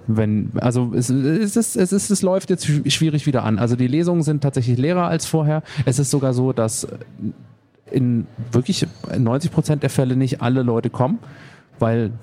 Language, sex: German, male